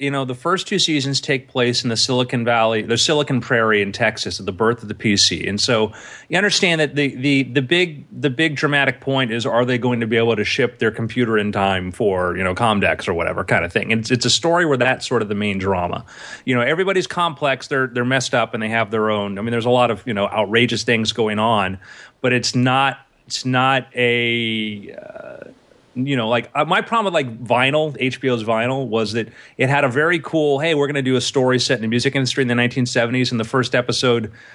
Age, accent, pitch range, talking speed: 30-49, American, 115-145 Hz, 240 wpm